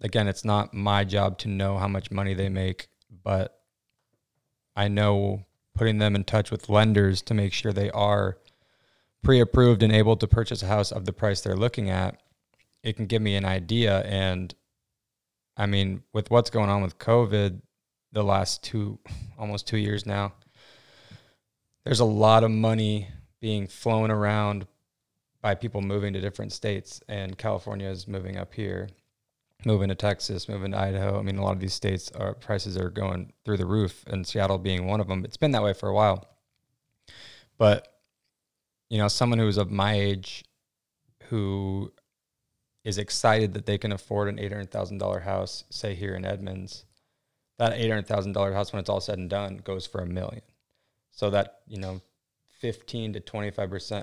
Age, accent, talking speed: 20-39, American, 170 wpm